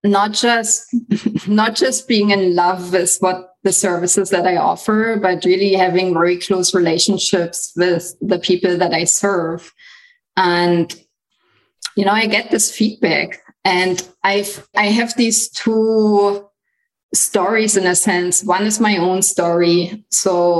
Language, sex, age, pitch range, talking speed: English, female, 20-39, 180-205 Hz, 145 wpm